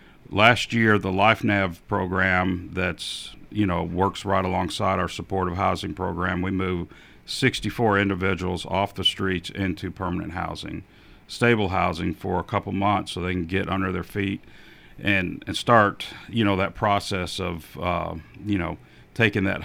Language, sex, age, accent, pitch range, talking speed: English, male, 50-69, American, 90-105 Hz, 155 wpm